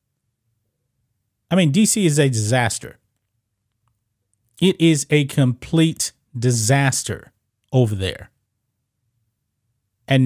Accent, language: American, English